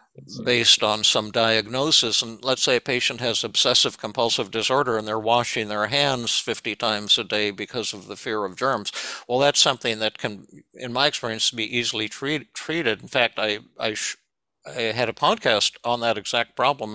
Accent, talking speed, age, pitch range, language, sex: American, 185 wpm, 60-79, 105-125 Hz, English, male